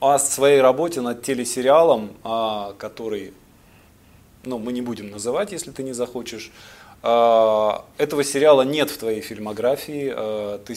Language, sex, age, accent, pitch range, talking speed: Russian, male, 20-39, native, 115-140 Hz, 130 wpm